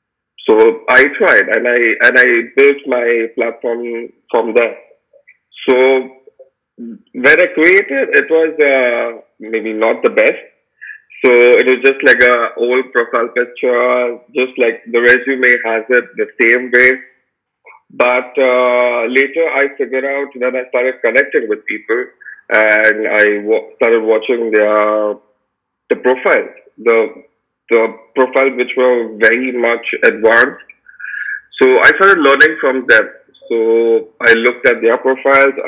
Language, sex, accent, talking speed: English, male, Indian, 135 wpm